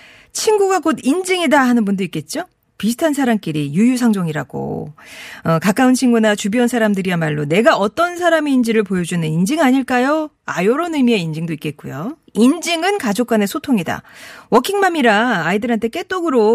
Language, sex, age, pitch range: Korean, female, 40-59, 195-275 Hz